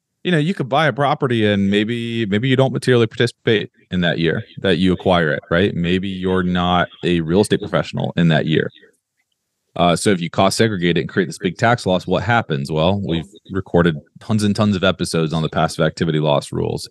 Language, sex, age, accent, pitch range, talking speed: English, male, 30-49, American, 80-105 Hz, 215 wpm